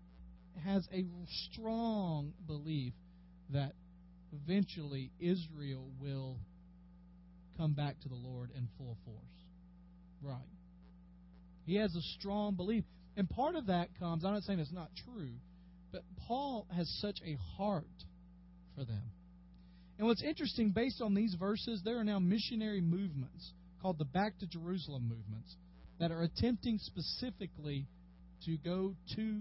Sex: male